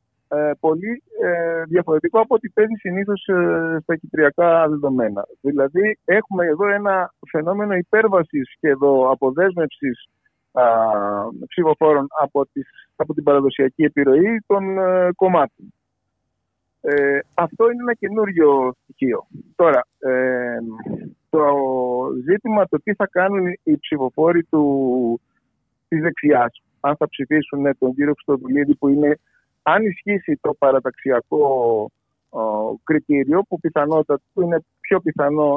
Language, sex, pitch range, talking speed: Greek, male, 130-180 Hz, 115 wpm